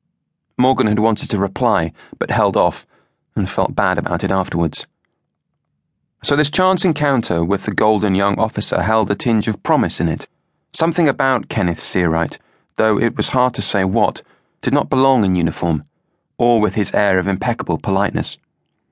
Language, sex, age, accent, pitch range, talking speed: English, male, 30-49, British, 95-120 Hz, 170 wpm